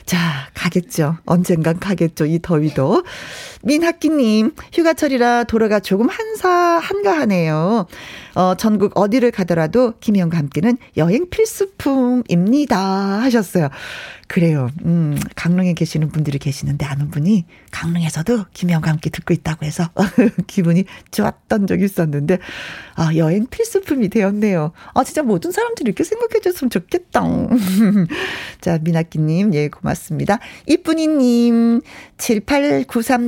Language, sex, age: Korean, female, 40-59